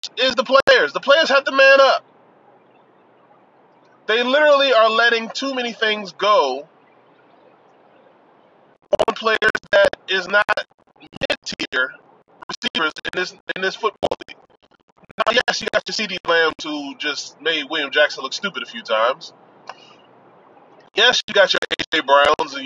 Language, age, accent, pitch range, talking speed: English, 20-39, American, 175-270 Hz, 145 wpm